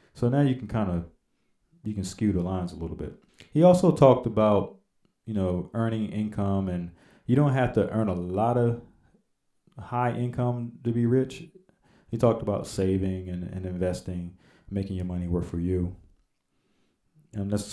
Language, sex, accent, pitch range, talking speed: English, male, American, 95-120 Hz, 175 wpm